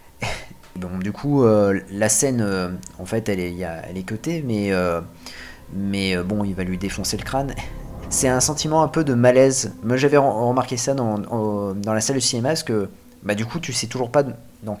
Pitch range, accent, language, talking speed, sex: 100-130 Hz, French, French, 225 wpm, male